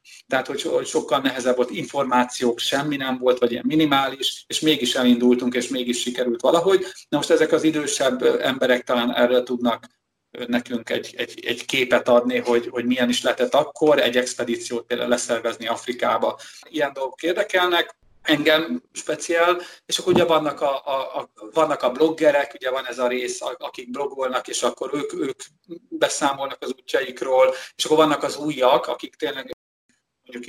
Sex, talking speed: male, 150 wpm